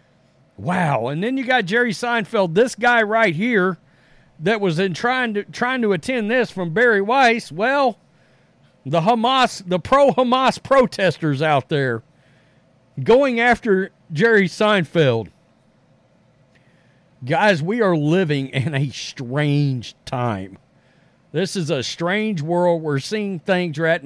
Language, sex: English, male